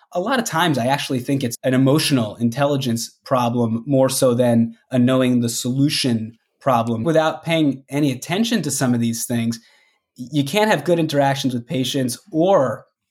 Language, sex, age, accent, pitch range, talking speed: English, male, 20-39, American, 130-165 Hz, 170 wpm